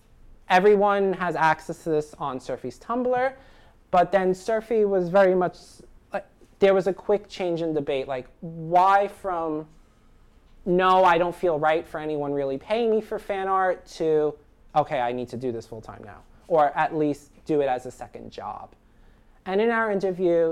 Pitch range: 140-190 Hz